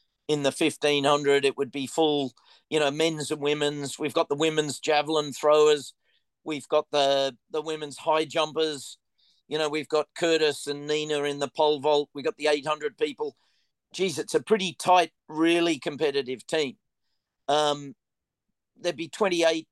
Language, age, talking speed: English, 40-59, 160 wpm